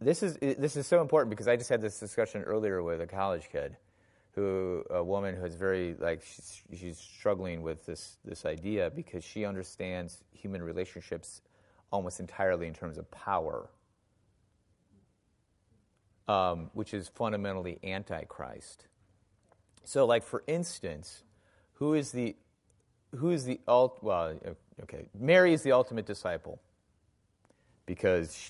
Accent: American